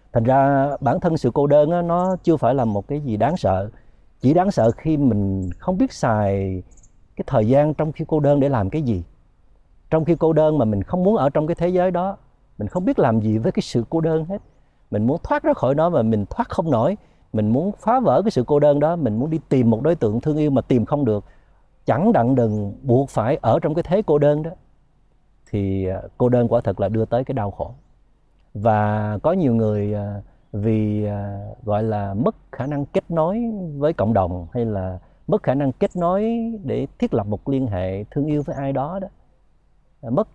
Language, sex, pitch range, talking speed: Vietnamese, male, 105-155 Hz, 225 wpm